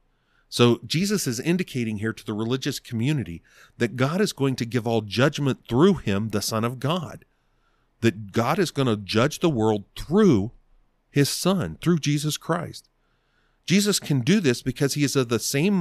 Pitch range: 115-160 Hz